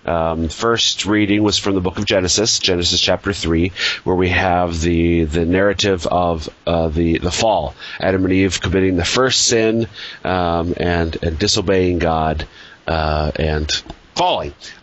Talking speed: 155 wpm